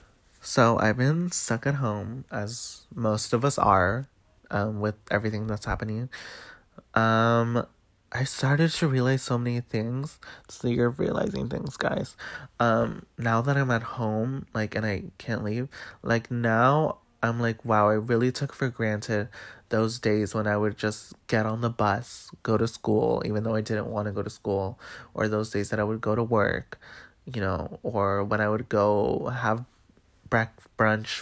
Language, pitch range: English, 105-120 Hz